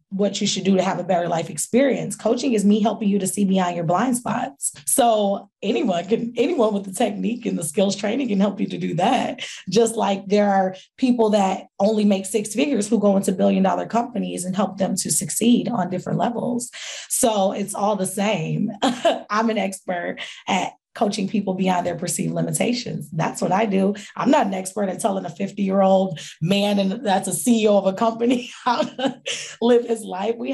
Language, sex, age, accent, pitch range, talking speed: English, female, 20-39, American, 175-220 Hz, 200 wpm